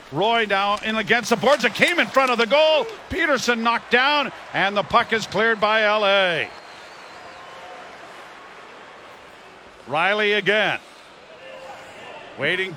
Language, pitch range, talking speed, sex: English, 195-240 Hz, 120 wpm, male